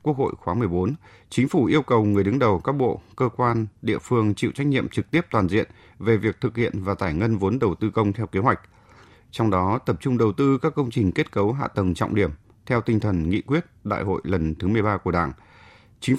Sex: male